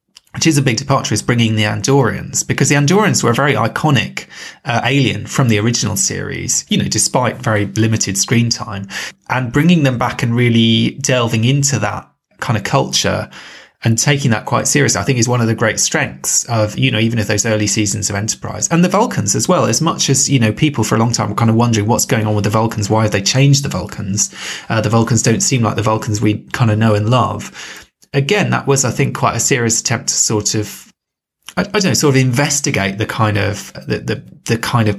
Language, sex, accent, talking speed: English, male, British, 235 wpm